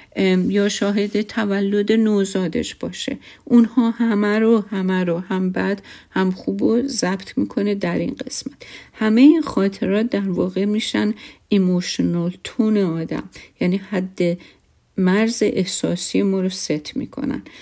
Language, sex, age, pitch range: Persian, female, 50-69, 180-210 Hz